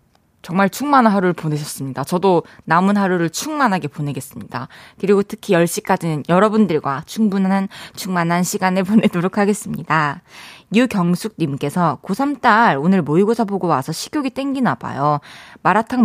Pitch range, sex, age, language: 155-210 Hz, female, 20-39, Korean